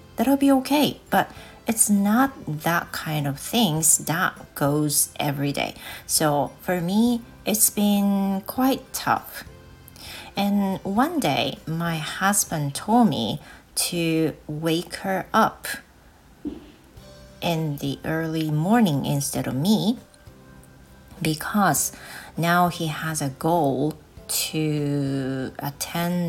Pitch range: 140-205 Hz